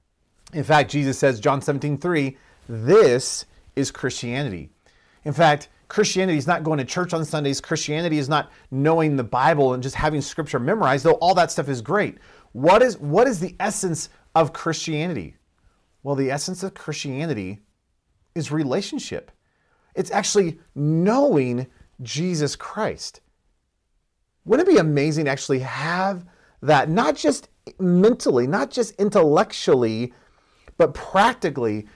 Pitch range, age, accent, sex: 135-185 Hz, 40-59, American, male